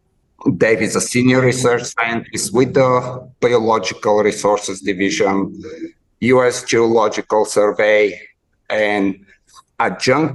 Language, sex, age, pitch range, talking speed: English, male, 60-79, 105-125 Hz, 95 wpm